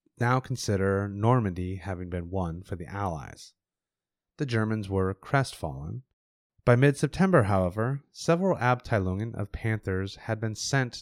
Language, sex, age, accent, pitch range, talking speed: English, male, 30-49, American, 95-130 Hz, 125 wpm